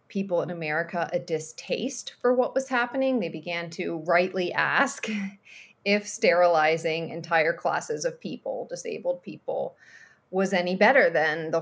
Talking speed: 140 wpm